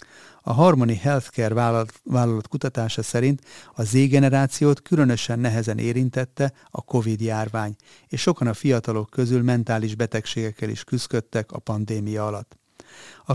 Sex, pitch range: male, 110-135 Hz